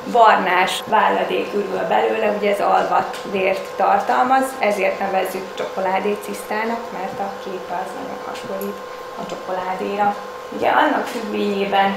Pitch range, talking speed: 195-225 Hz, 110 wpm